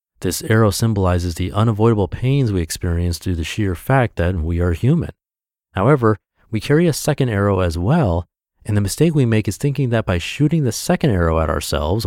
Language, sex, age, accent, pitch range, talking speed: English, male, 30-49, American, 90-115 Hz, 195 wpm